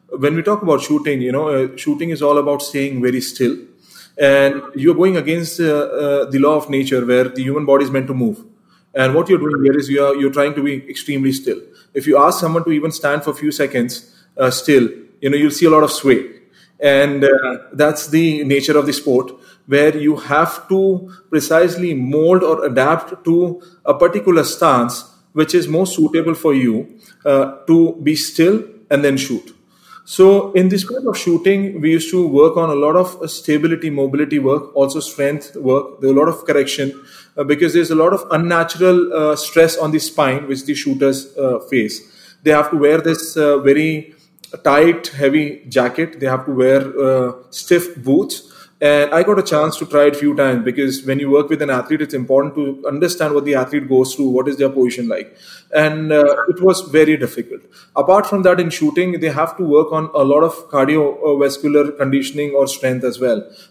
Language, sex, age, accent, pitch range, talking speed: English, male, 30-49, Indian, 140-165 Hz, 205 wpm